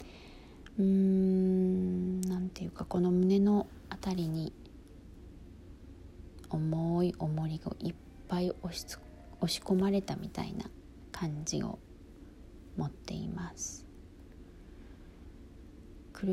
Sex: female